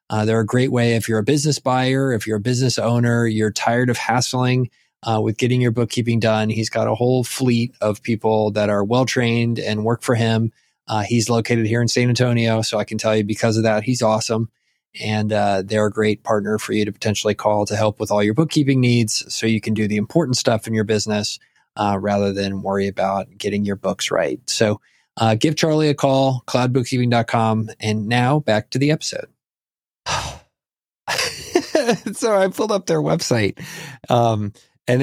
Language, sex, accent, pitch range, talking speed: English, male, American, 105-125 Hz, 195 wpm